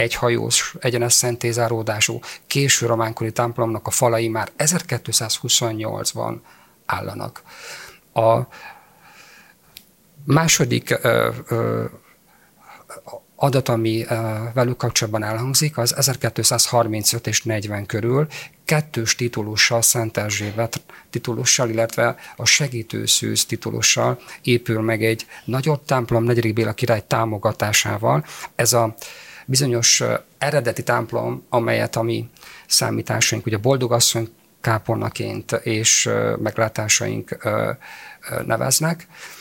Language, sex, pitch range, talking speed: Hungarian, male, 115-135 Hz, 90 wpm